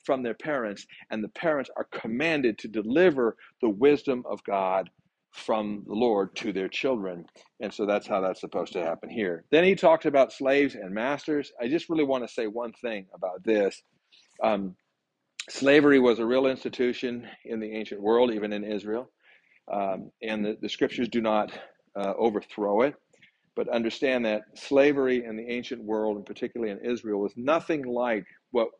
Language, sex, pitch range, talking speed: English, male, 105-130 Hz, 175 wpm